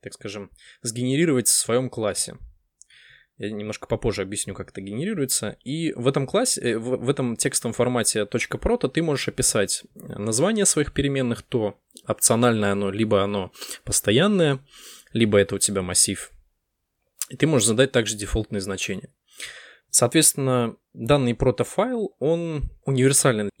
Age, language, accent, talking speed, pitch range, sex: 20-39, Russian, native, 135 wpm, 105-140 Hz, male